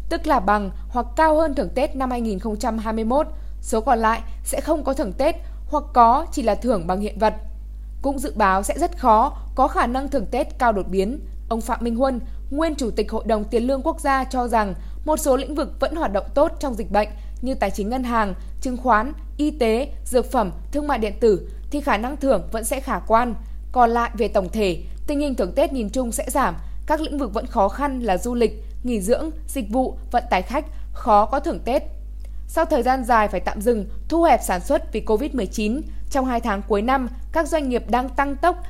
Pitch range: 220-285 Hz